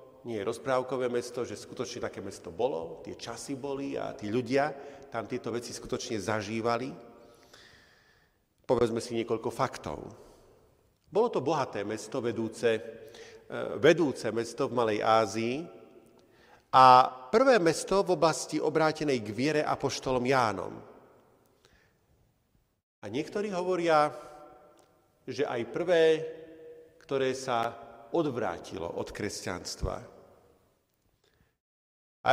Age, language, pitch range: 40-59, Slovak, 120-165 Hz